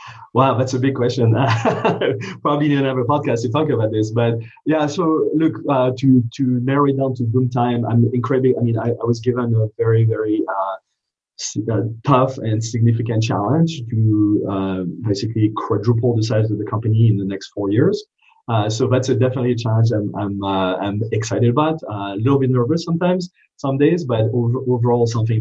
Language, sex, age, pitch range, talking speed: English, male, 30-49, 100-120 Hz, 195 wpm